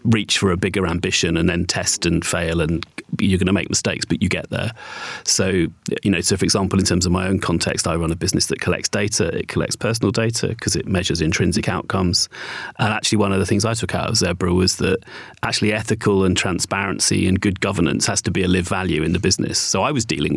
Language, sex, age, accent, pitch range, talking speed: English, male, 30-49, British, 90-100 Hz, 240 wpm